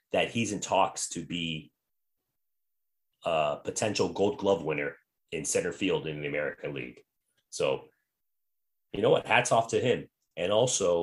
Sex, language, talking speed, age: male, English, 150 wpm, 30-49